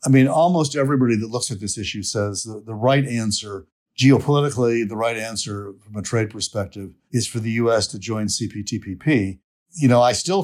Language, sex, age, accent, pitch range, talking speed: English, male, 50-69, American, 110-135 Hz, 190 wpm